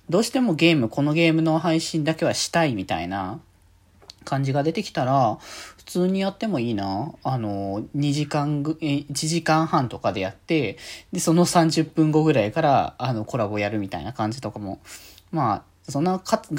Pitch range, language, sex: 120-170 Hz, Japanese, male